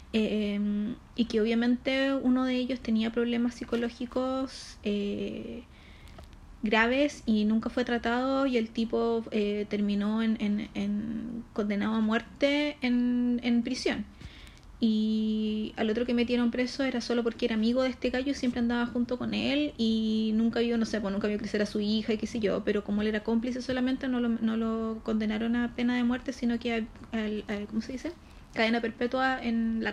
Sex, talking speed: female, 185 wpm